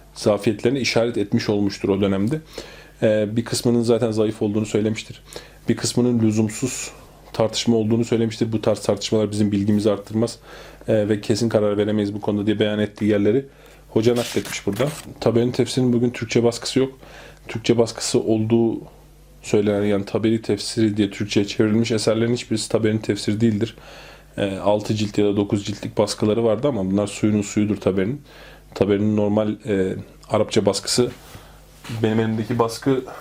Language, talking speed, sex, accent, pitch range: Turkish, 145 wpm, male, native, 105-120 Hz